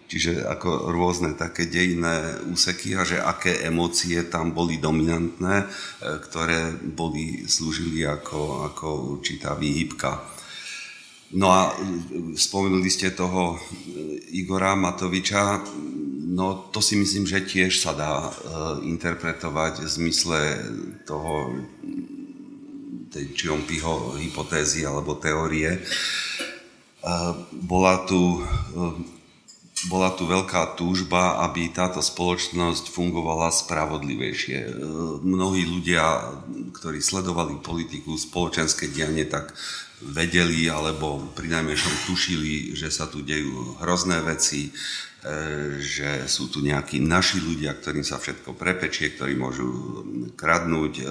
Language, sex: Slovak, male